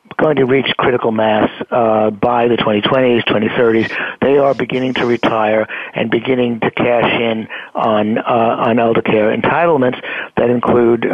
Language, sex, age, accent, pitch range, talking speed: English, male, 60-79, American, 110-130 Hz, 150 wpm